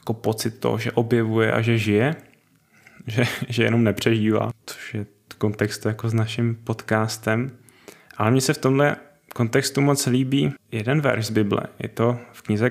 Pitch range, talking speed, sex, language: 110-125 Hz, 175 wpm, male, Czech